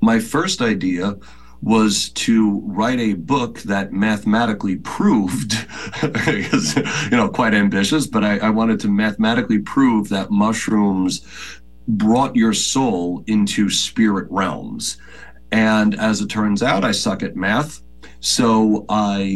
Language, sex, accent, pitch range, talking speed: English, male, American, 95-115 Hz, 125 wpm